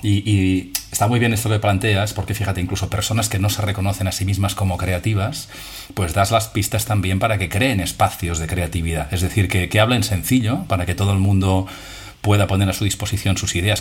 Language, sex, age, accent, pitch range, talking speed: Spanish, male, 40-59, Spanish, 95-115 Hz, 215 wpm